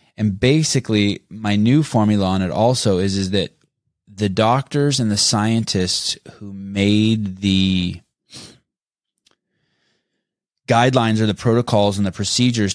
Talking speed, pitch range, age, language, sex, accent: 120 wpm, 90-110 Hz, 20-39, English, male, American